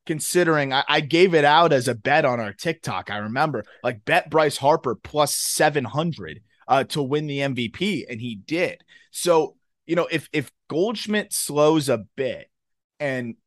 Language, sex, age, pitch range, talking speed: English, male, 30-49, 120-155 Hz, 170 wpm